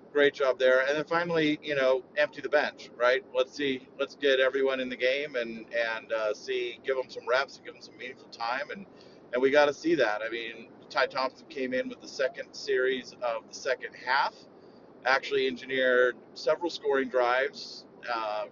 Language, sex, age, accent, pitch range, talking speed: English, male, 40-59, American, 125-170 Hz, 200 wpm